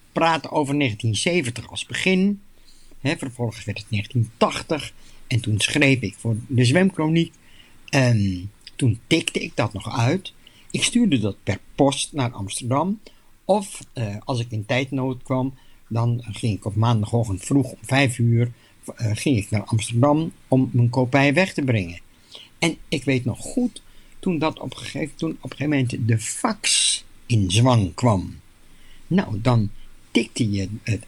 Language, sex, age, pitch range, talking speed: Dutch, male, 60-79, 105-145 Hz, 160 wpm